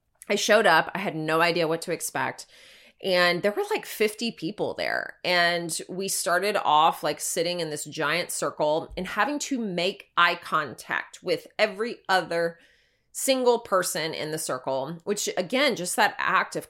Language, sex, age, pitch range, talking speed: English, female, 20-39, 165-210 Hz, 170 wpm